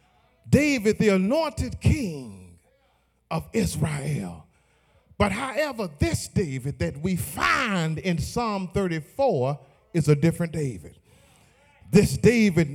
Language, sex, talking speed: English, male, 105 wpm